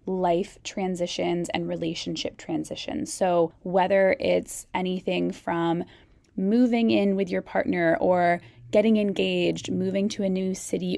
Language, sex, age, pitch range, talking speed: English, female, 10-29, 175-200 Hz, 125 wpm